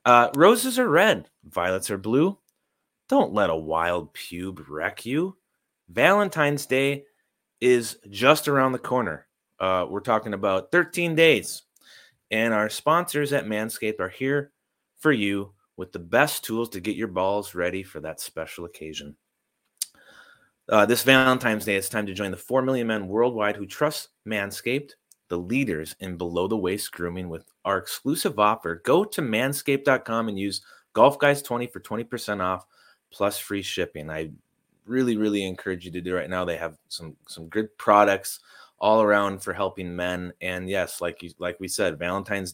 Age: 30-49